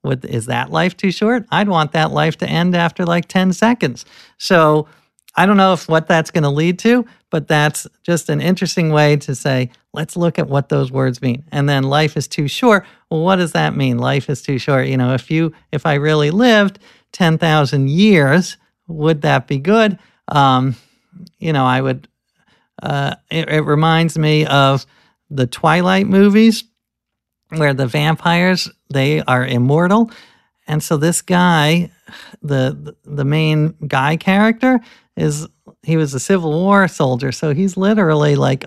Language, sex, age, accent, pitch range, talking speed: English, male, 50-69, American, 145-185 Hz, 170 wpm